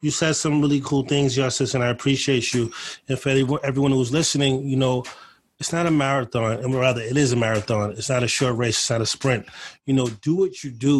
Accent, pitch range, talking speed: American, 130-170 Hz, 235 wpm